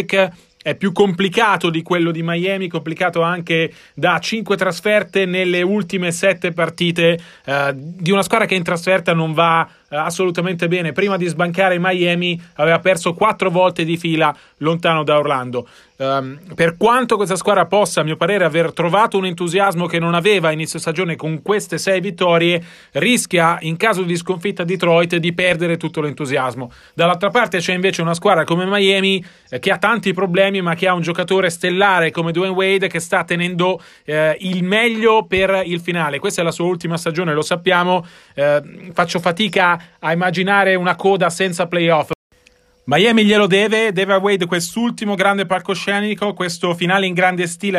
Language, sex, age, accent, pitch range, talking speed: Italian, male, 30-49, native, 165-195 Hz, 170 wpm